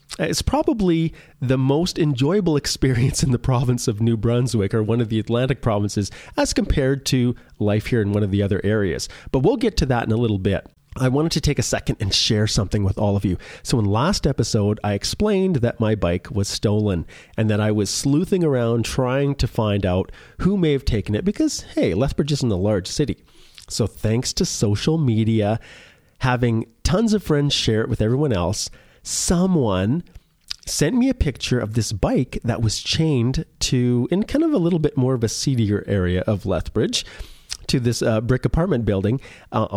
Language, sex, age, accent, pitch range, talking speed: English, male, 30-49, American, 105-135 Hz, 195 wpm